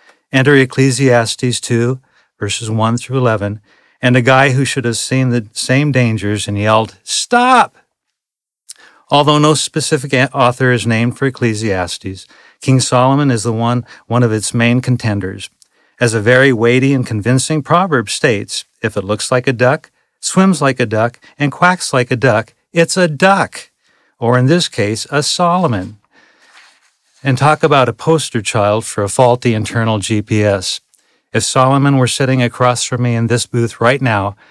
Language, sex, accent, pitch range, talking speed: English, male, American, 115-140 Hz, 160 wpm